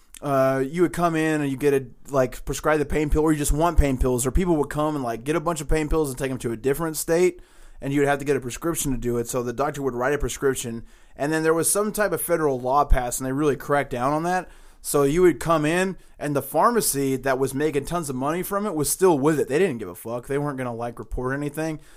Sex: male